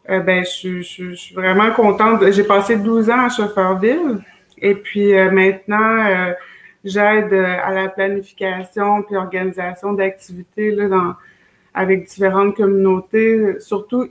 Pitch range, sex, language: 185-205 Hz, female, French